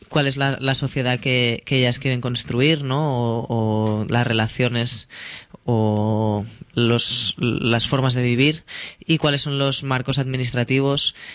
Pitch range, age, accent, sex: 115-135 Hz, 20-39, Spanish, female